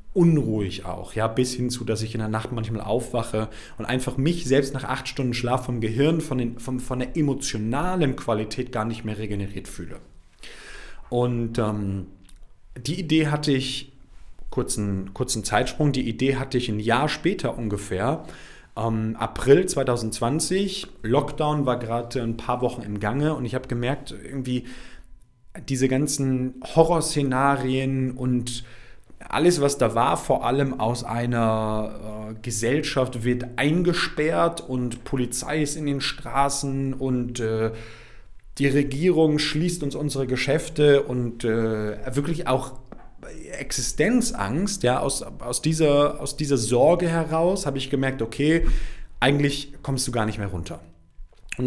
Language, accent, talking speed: German, German, 140 wpm